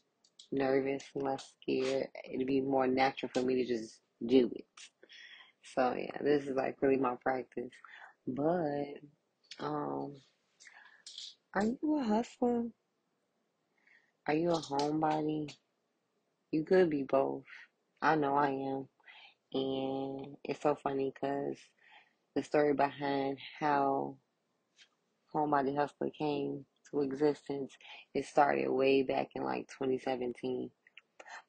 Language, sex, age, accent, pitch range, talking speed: English, female, 20-39, American, 130-155 Hz, 110 wpm